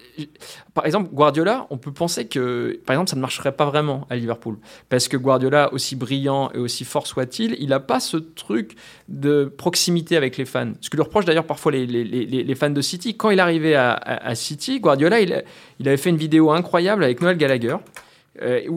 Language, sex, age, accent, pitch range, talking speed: French, male, 20-39, French, 130-170 Hz, 215 wpm